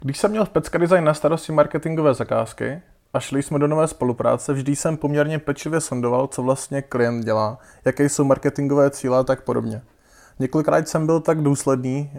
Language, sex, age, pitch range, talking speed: Czech, male, 20-39, 130-150 Hz, 180 wpm